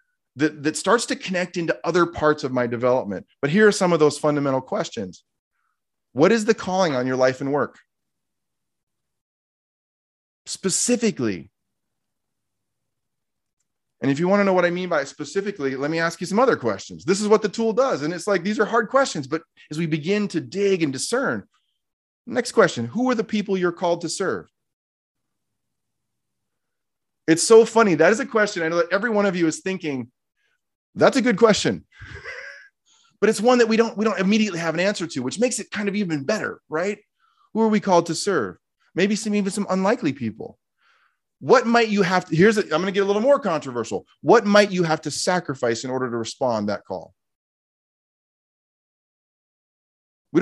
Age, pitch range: 30-49, 145-210 Hz